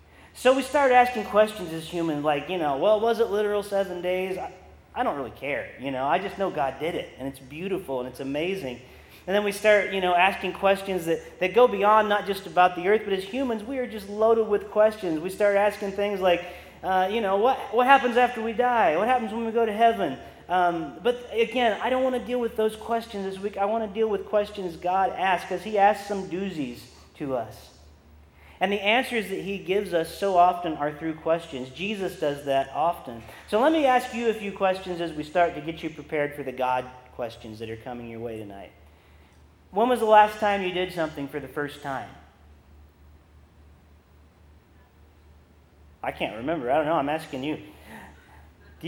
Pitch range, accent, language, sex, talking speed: 125-215 Hz, American, English, male, 210 wpm